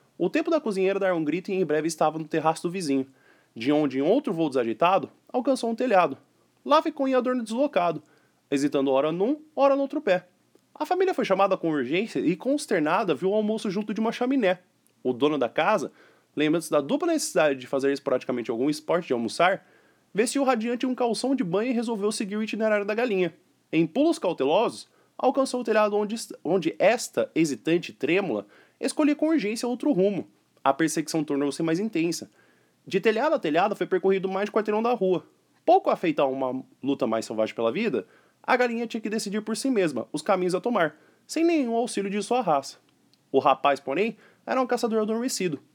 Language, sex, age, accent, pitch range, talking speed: Portuguese, male, 20-39, Brazilian, 155-245 Hz, 190 wpm